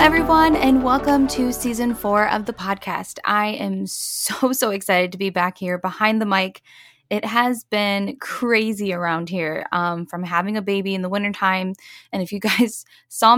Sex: female